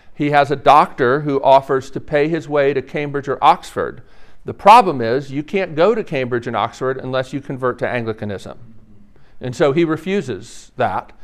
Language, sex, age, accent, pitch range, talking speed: English, male, 50-69, American, 130-190 Hz, 180 wpm